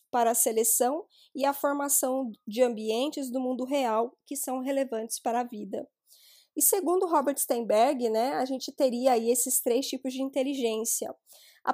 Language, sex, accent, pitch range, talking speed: Portuguese, female, Brazilian, 235-285 Hz, 160 wpm